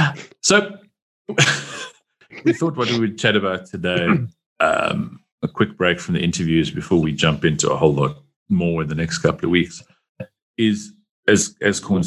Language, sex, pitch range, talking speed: English, male, 85-110 Hz, 160 wpm